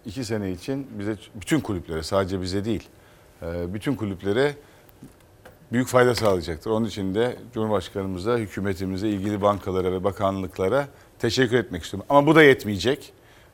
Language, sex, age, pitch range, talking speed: Turkish, male, 50-69, 95-120 Hz, 135 wpm